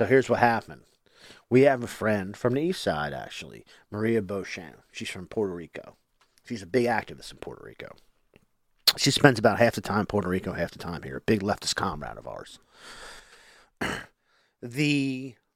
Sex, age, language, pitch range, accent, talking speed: male, 40-59, English, 105-140 Hz, American, 175 wpm